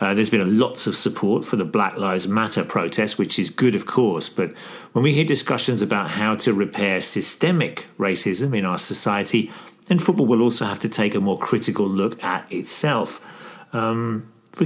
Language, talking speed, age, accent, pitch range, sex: English, 190 wpm, 40-59, British, 105-125 Hz, male